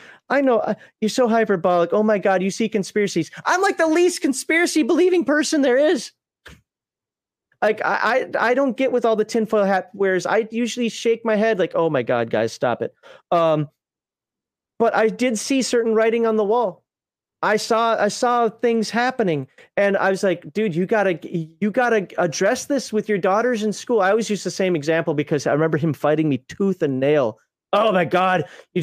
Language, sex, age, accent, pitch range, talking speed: English, male, 30-49, American, 185-245 Hz, 200 wpm